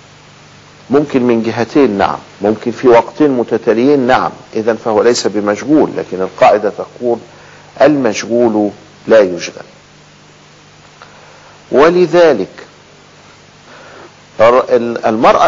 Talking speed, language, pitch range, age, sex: 80 wpm, Arabic, 105-145 Hz, 50-69, male